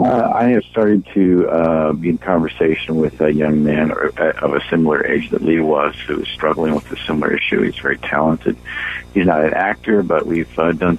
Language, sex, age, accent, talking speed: English, male, 60-79, American, 220 wpm